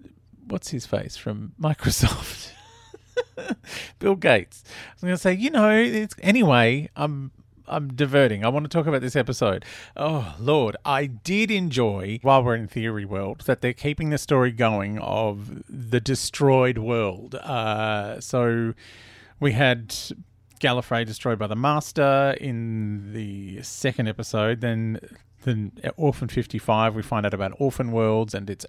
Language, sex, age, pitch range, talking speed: English, male, 40-59, 110-135 Hz, 140 wpm